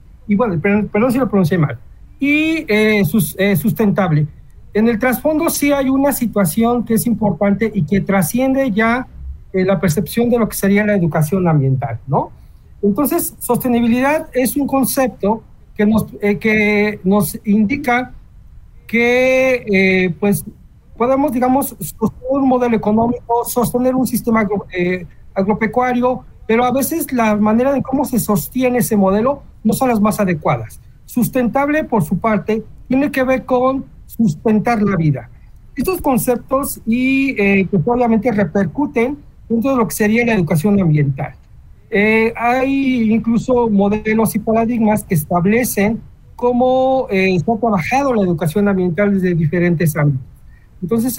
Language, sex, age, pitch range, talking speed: Spanish, male, 40-59, 200-250 Hz, 145 wpm